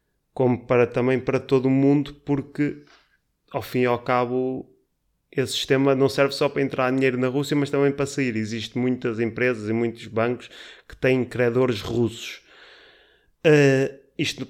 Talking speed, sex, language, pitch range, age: 155 wpm, male, Portuguese, 115-135 Hz, 20-39